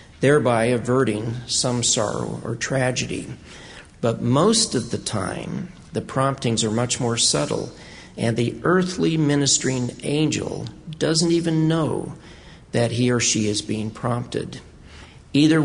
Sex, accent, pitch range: male, American, 110-140 Hz